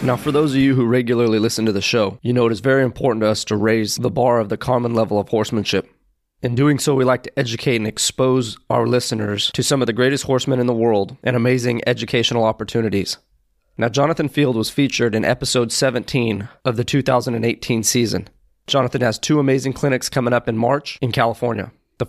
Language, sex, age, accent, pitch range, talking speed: English, male, 30-49, American, 115-130 Hz, 210 wpm